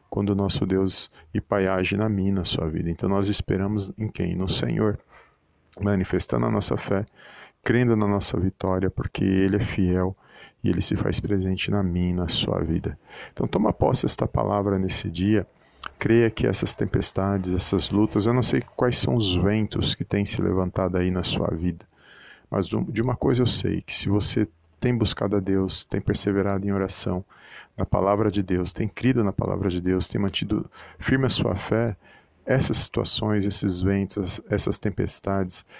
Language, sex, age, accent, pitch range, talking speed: Portuguese, male, 40-59, Brazilian, 95-105 Hz, 180 wpm